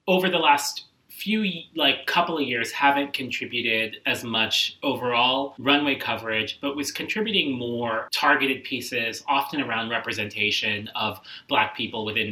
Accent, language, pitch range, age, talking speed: American, English, 105-135 Hz, 30-49, 135 wpm